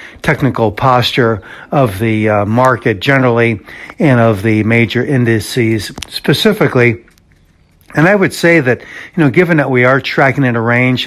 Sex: male